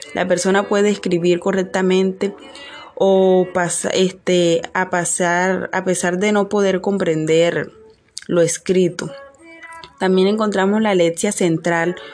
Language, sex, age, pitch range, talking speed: Spanish, female, 20-39, 175-200 Hz, 115 wpm